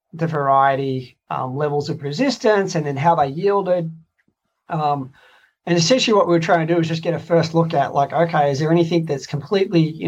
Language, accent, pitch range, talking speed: English, Australian, 140-170 Hz, 200 wpm